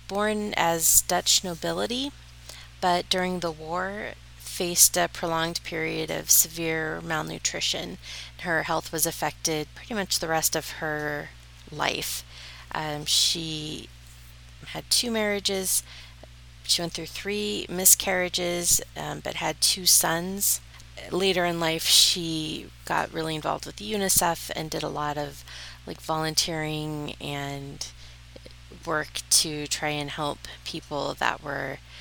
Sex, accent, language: female, American, English